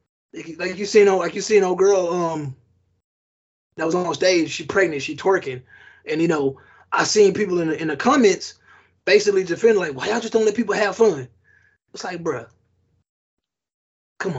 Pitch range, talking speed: 135-200 Hz, 185 wpm